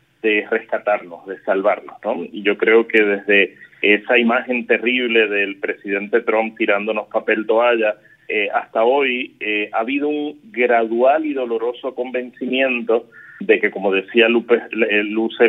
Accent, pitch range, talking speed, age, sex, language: Argentinian, 110-140 Hz, 135 wpm, 30-49, male, Spanish